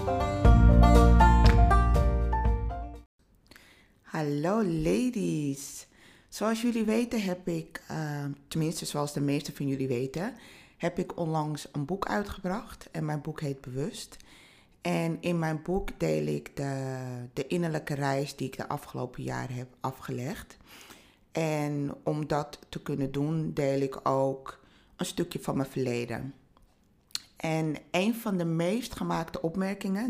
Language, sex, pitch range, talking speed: Dutch, female, 135-180 Hz, 130 wpm